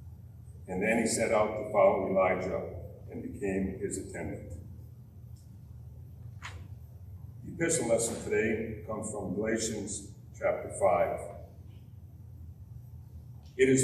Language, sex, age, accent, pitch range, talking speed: English, male, 50-69, American, 100-115 Hz, 100 wpm